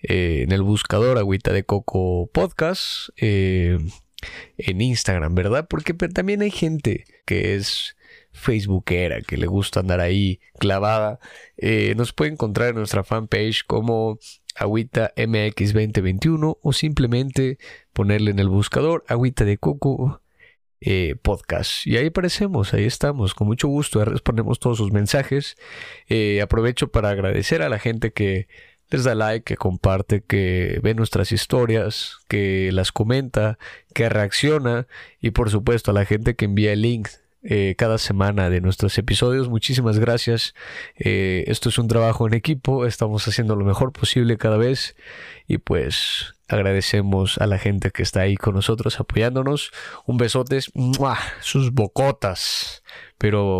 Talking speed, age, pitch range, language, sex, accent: 150 wpm, 30-49, 100-125 Hz, Spanish, male, Mexican